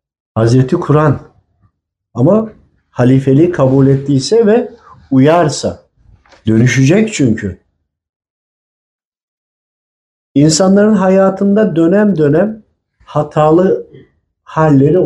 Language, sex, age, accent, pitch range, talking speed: Turkish, male, 50-69, native, 125-175 Hz, 65 wpm